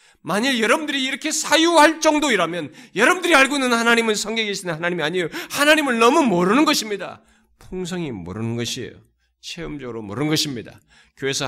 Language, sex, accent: Korean, male, native